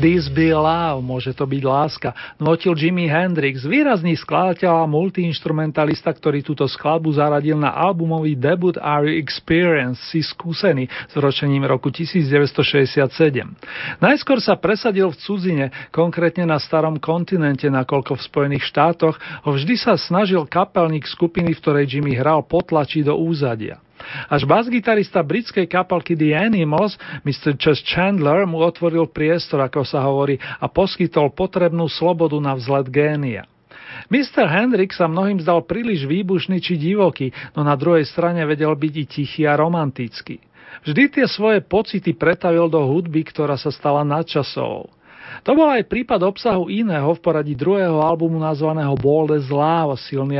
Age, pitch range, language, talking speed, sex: 40-59, 145-180 Hz, Slovak, 145 wpm, male